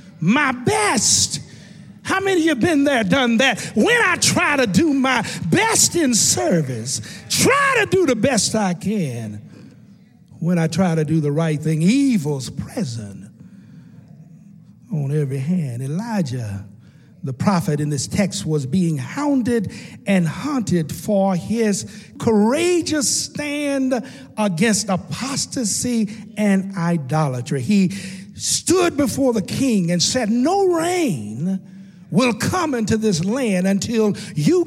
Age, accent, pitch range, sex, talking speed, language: 50-69, American, 170-255 Hz, male, 130 wpm, English